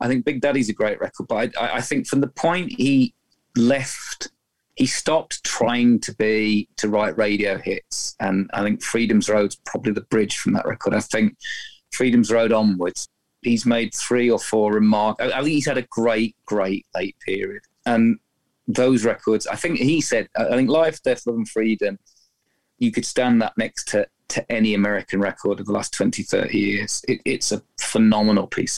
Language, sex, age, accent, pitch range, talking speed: English, male, 30-49, British, 105-130 Hz, 190 wpm